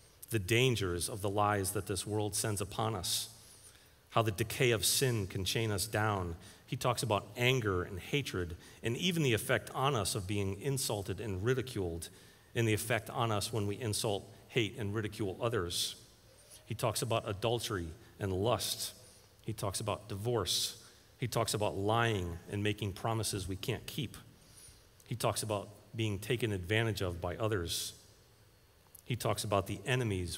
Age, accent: 40-59, American